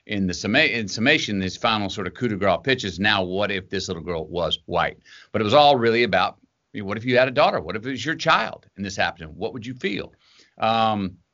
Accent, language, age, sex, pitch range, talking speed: American, English, 40-59, male, 95-135 Hz, 245 wpm